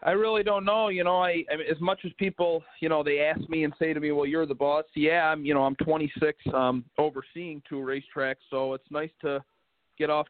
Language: English